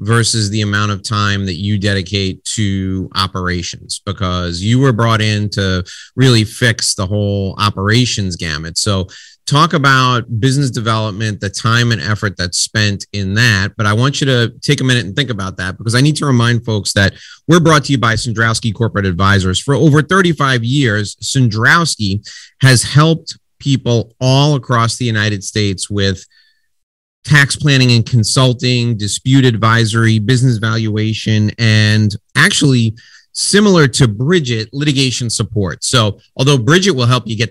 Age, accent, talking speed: 30-49, American, 155 wpm